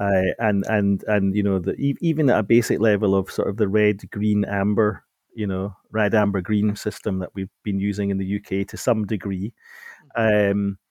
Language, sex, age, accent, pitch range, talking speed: English, male, 40-59, British, 100-115 Hz, 200 wpm